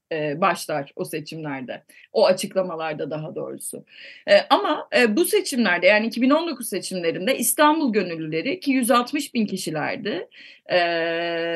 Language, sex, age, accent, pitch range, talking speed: Turkish, female, 30-49, native, 220-300 Hz, 115 wpm